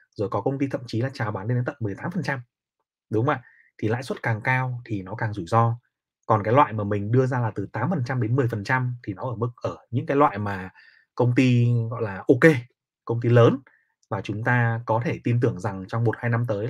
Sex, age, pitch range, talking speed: male, 20-39, 110-140 Hz, 240 wpm